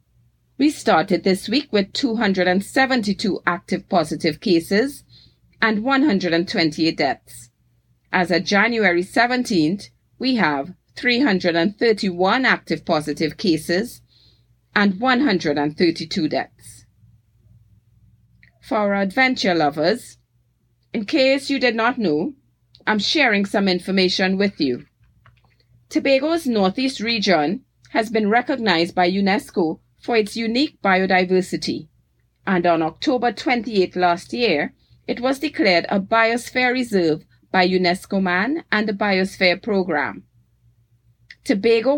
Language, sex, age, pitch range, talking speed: English, female, 30-49, 160-225 Hz, 105 wpm